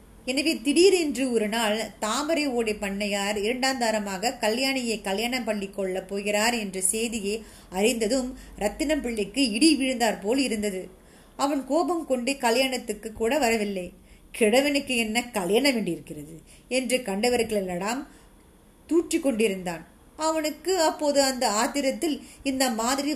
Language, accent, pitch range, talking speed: Tamil, native, 215-275 Hz, 105 wpm